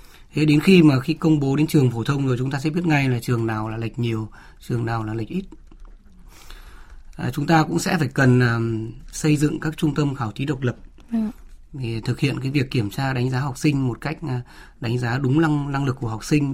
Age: 20-39